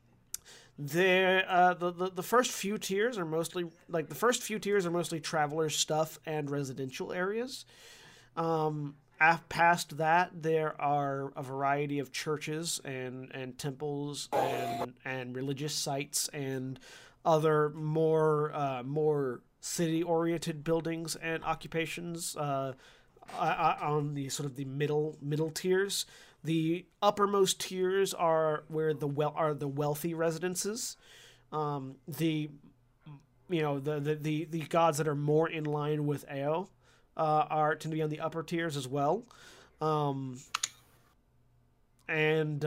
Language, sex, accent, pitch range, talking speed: English, male, American, 140-165 Hz, 140 wpm